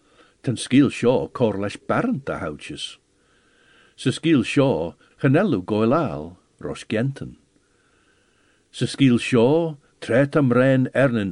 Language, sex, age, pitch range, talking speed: English, male, 60-79, 110-155 Hz, 95 wpm